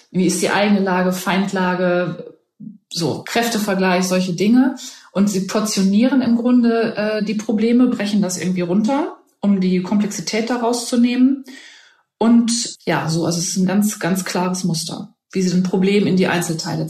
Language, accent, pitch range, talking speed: German, German, 180-215 Hz, 165 wpm